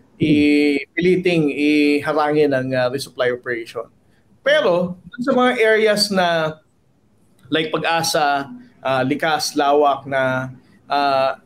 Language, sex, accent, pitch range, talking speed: Filipino, male, native, 140-185 Hz, 100 wpm